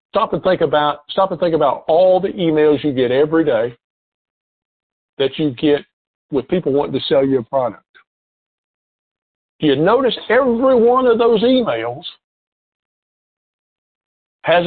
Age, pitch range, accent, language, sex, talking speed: 50-69, 135-180 Hz, American, English, male, 130 wpm